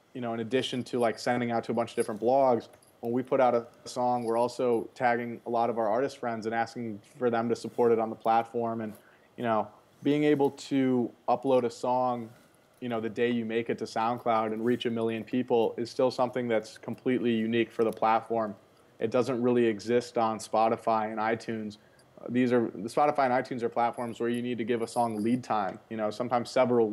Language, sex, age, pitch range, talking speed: English, male, 20-39, 115-125 Hz, 225 wpm